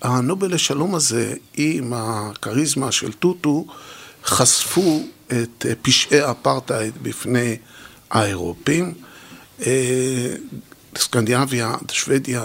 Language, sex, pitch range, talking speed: Hebrew, male, 115-145 Hz, 70 wpm